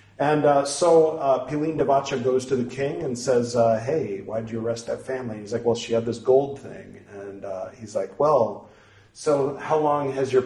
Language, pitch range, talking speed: English, 110-145 Hz, 220 wpm